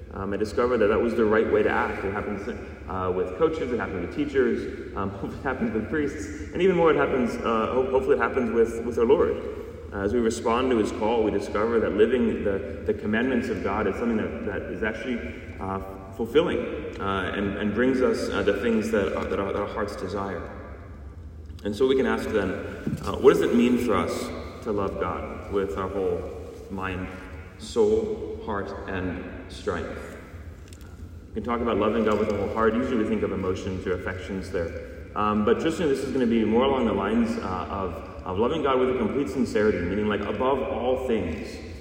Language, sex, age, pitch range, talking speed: English, male, 30-49, 95-130 Hz, 210 wpm